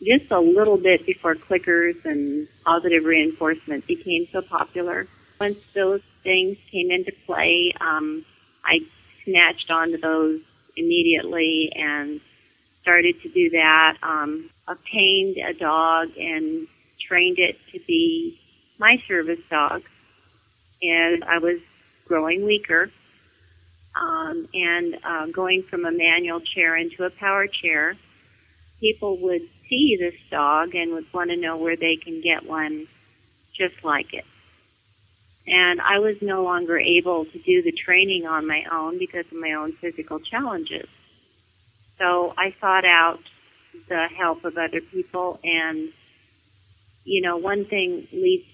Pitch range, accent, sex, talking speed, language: 155-190 Hz, American, female, 135 wpm, English